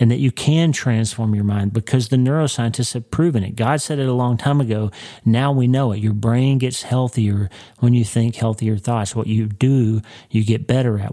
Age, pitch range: 40-59, 110-130 Hz